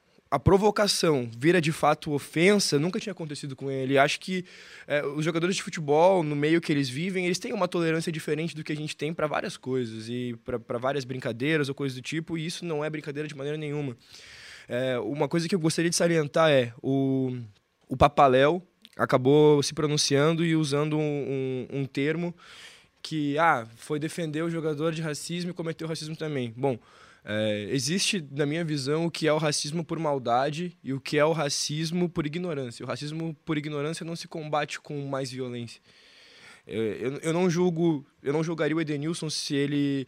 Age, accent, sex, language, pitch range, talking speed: 20-39, Brazilian, male, Portuguese, 140-170 Hz, 190 wpm